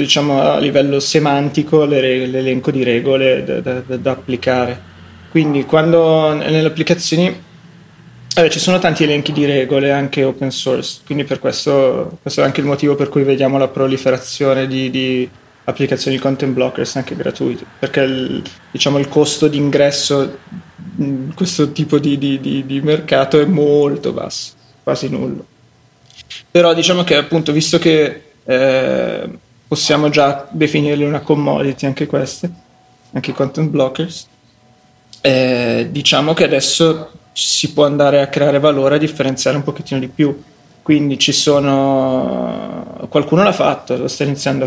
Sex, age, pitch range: male, 20-39, 135-150 Hz